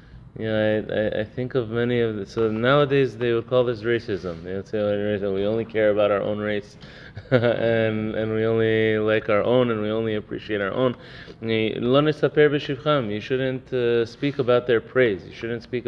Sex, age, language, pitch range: male, 20-39, English, 105-125 Hz